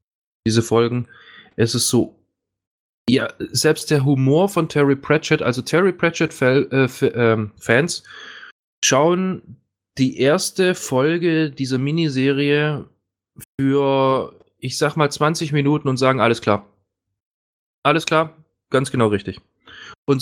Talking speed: 115 wpm